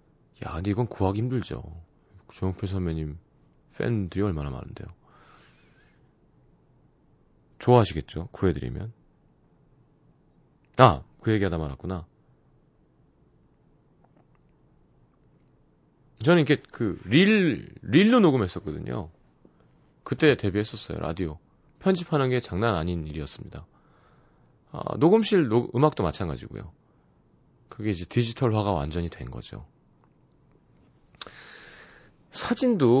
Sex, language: male, Korean